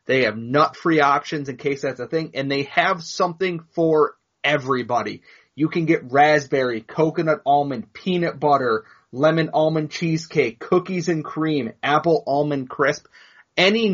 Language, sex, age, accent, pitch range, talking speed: English, male, 30-49, American, 140-170 Hz, 140 wpm